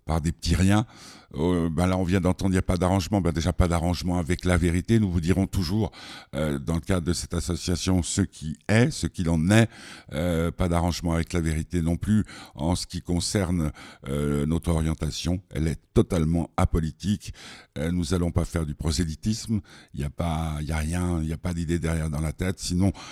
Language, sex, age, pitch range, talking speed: French, male, 60-79, 80-95 Hz, 210 wpm